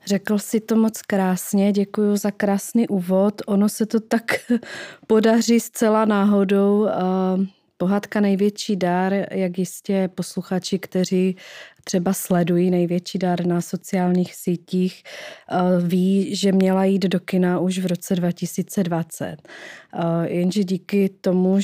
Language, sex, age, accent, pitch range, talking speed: Czech, female, 30-49, native, 180-200 Hz, 120 wpm